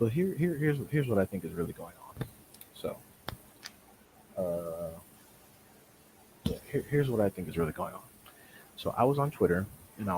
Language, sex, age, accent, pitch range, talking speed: English, male, 30-49, American, 85-105 Hz, 185 wpm